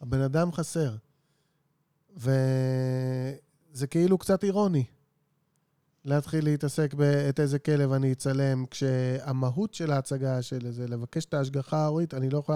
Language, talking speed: Hebrew, 120 wpm